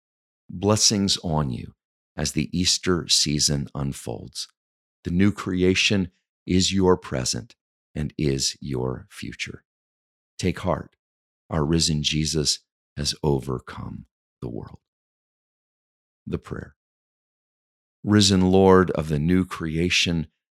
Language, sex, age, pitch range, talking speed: English, male, 50-69, 70-90 Hz, 100 wpm